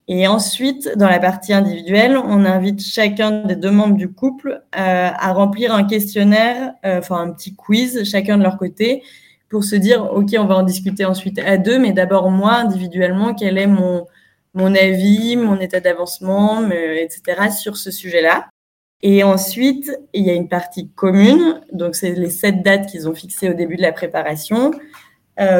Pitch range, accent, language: 180-210 Hz, French, French